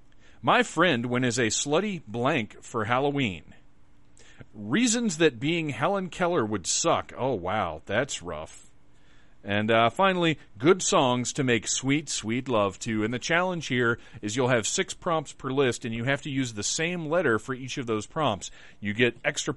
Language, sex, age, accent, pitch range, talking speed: English, male, 40-59, American, 115-150 Hz, 180 wpm